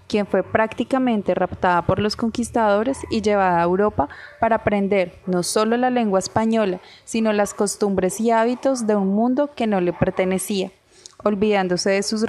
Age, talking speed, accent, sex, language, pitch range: 20-39, 160 wpm, Colombian, female, Spanish, 190-230 Hz